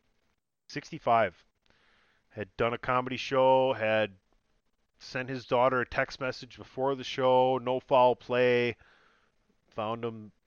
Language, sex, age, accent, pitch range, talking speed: English, male, 30-49, American, 105-130 Hz, 120 wpm